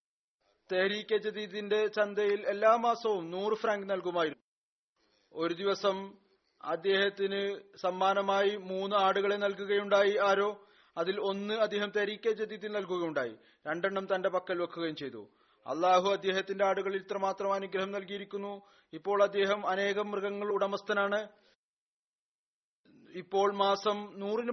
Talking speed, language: 100 wpm, Malayalam